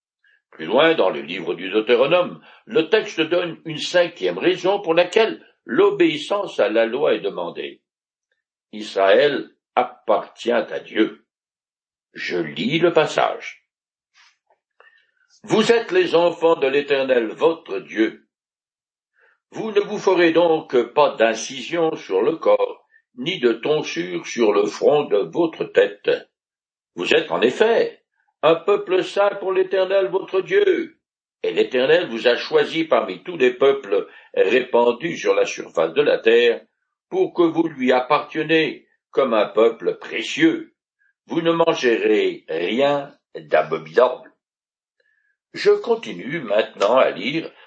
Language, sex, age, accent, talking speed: French, male, 60-79, French, 130 wpm